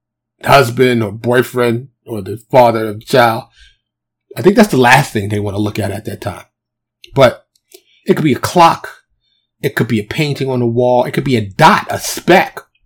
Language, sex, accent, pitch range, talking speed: English, male, American, 110-140 Hz, 205 wpm